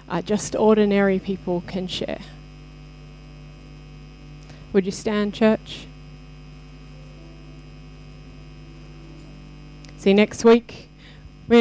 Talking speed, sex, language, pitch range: 70 wpm, female, English, 150-225 Hz